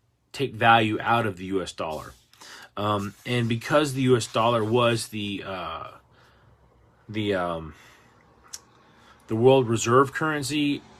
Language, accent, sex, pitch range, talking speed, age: English, American, male, 100-130 Hz, 120 wpm, 30-49